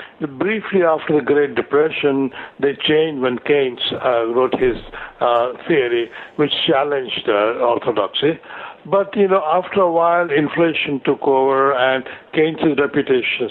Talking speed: 135 wpm